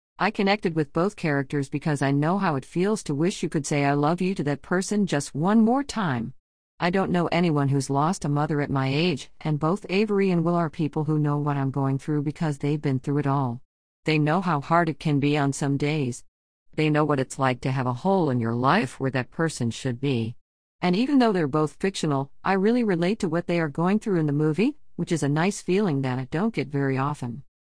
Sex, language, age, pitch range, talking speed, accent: female, English, 50-69, 140-175 Hz, 245 wpm, American